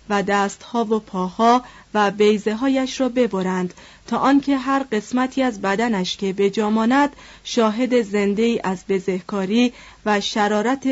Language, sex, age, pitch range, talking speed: Persian, female, 30-49, 195-255 Hz, 125 wpm